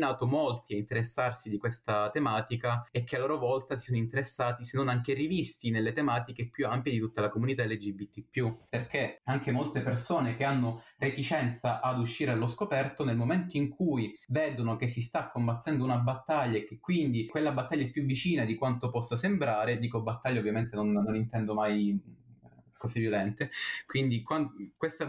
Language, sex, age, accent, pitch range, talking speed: Italian, male, 20-39, native, 115-145 Hz, 170 wpm